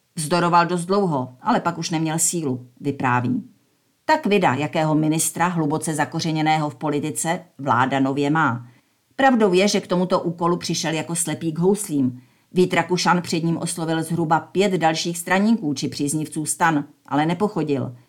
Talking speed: 145 wpm